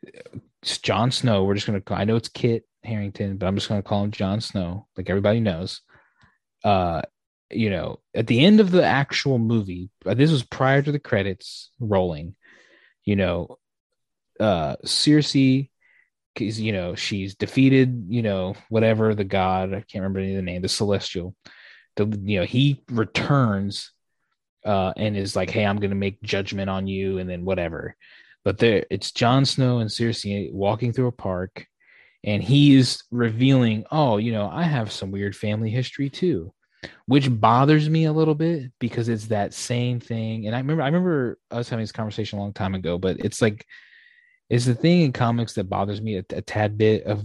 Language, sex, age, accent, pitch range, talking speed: English, male, 20-39, American, 100-130 Hz, 185 wpm